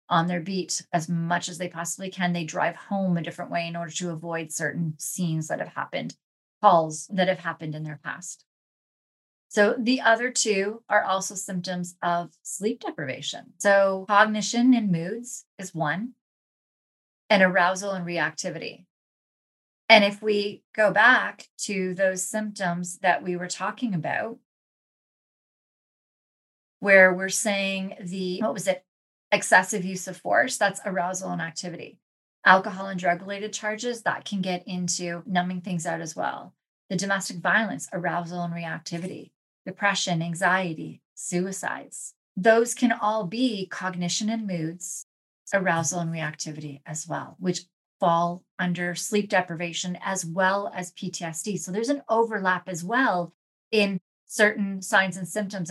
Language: English